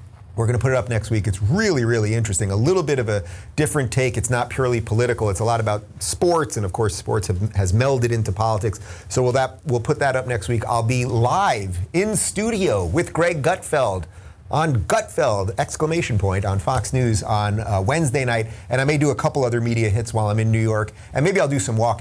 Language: English